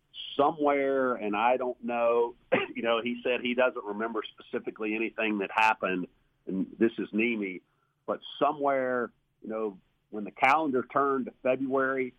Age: 50-69